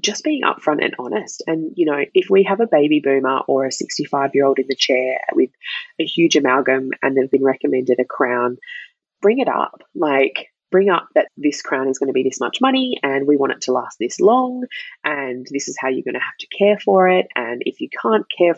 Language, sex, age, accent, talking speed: English, female, 20-39, Australian, 235 wpm